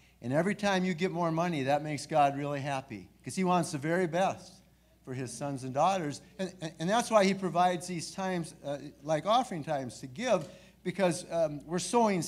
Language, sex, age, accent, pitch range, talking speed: English, male, 60-79, American, 160-200 Hz, 200 wpm